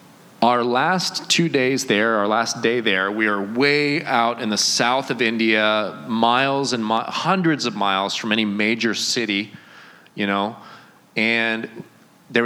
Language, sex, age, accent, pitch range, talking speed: English, male, 30-49, American, 105-135 Hz, 150 wpm